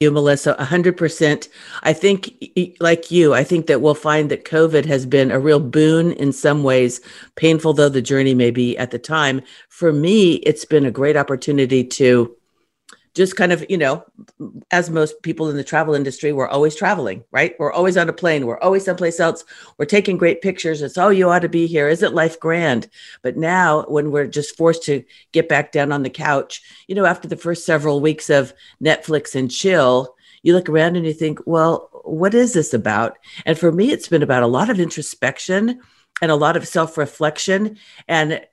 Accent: American